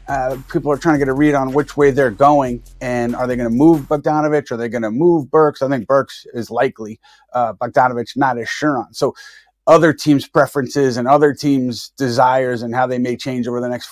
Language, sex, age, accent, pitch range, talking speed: English, male, 30-49, American, 120-145 Hz, 230 wpm